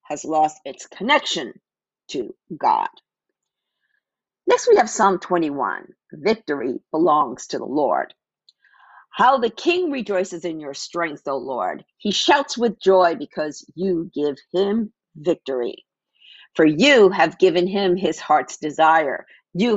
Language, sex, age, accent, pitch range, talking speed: English, female, 50-69, American, 160-220 Hz, 130 wpm